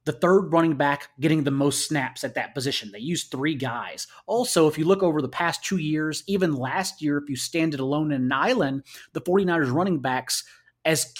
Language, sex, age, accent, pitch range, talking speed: English, male, 30-49, American, 135-175 Hz, 215 wpm